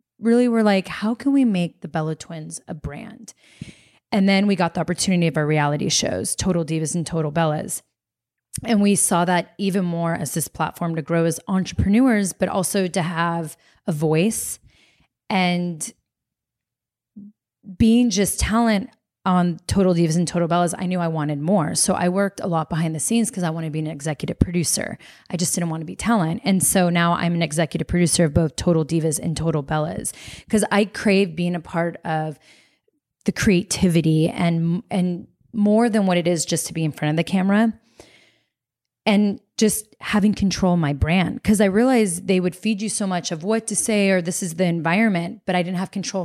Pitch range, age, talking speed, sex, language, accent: 165-200 Hz, 30-49, 195 wpm, female, English, American